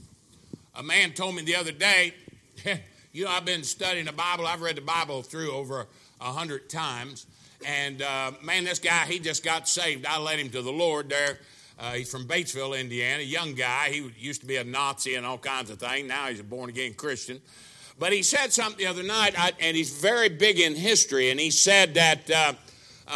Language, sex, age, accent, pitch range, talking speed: English, male, 60-79, American, 145-195 Hz, 210 wpm